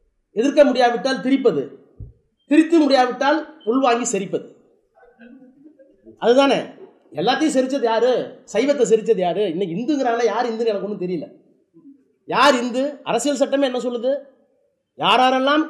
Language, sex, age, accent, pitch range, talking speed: Tamil, male, 30-49, native, 225-290 Hz, 105 wpm